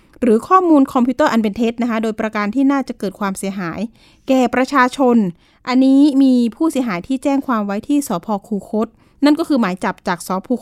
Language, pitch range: Thai, 215-270 Hz